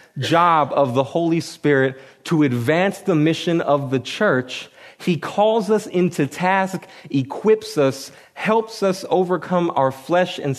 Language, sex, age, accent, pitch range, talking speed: English, male, 30-49, American, 125-165 Hz, 140 wpm